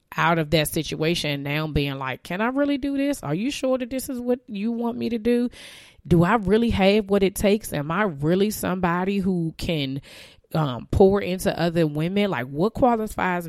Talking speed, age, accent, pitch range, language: 205 wpm, 20-39, American, 145-170 Hz, English